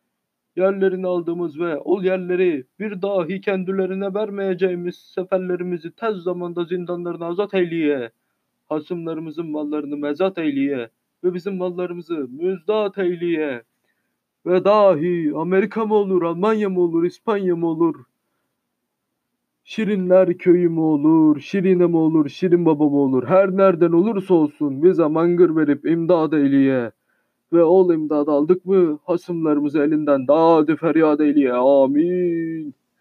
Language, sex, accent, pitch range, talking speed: Turkish, male, native, 155-185 Hz, 120 wpm